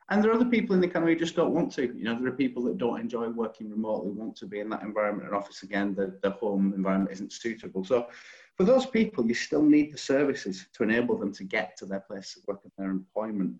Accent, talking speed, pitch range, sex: British, 265 wpm, 100-125 Hz, male